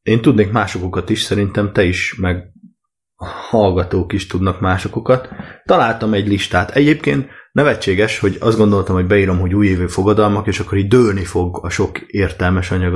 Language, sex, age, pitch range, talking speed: Hungarian, male, 30-49, 90-120 Hz, 155 wpm